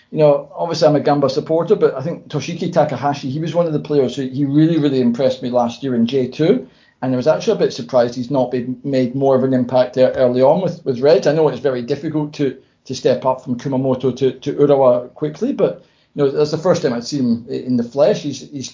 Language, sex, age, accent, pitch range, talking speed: English, male, 40-59, British, 130-155 Hz, 255 wpm